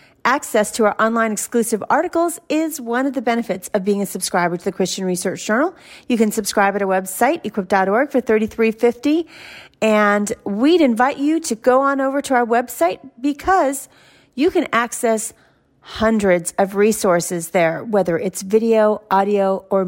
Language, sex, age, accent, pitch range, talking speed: English, female, 40-59, American, 195-270 Hz, 165 wpm